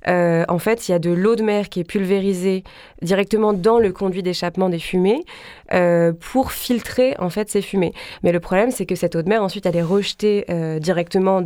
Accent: French